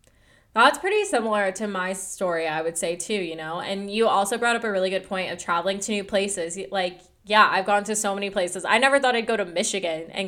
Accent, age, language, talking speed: American, 10-29, English, 245 wpm